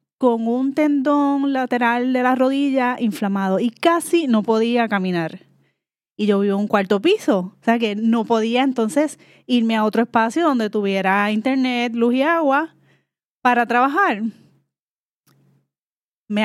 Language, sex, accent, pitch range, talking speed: Spanish, female, American, 205-275 Hz, 140 wpm